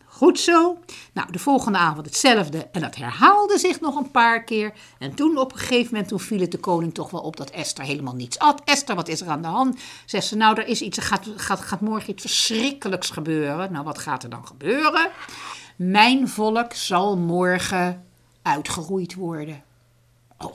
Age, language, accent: 60-79, Dutch, Dutch